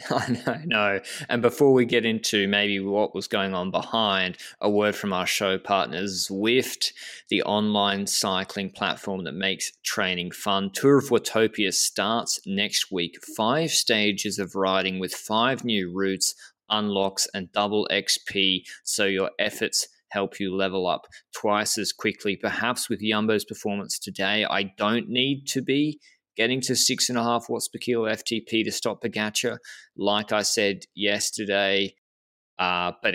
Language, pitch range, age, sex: English, 100-130 Hz, 20-39, male